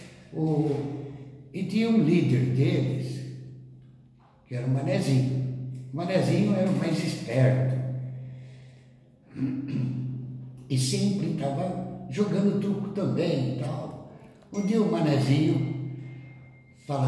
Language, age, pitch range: Portuguese, 60-79, 130-165 Hz